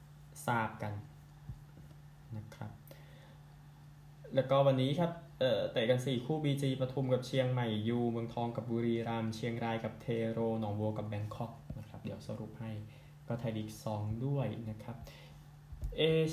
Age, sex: 10-29, male